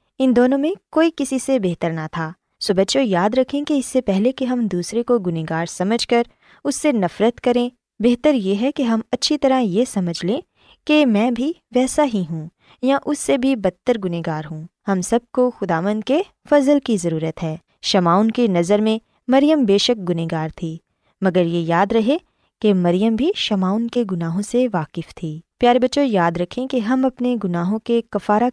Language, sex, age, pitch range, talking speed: Urdu, female, 20-39, 175-260 Hz, 195 wpm